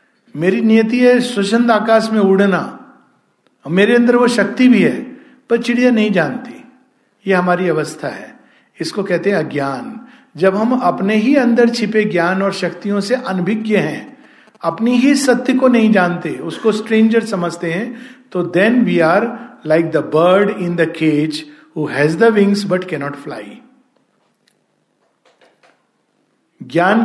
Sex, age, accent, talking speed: male, 50-69, native, 145 wpm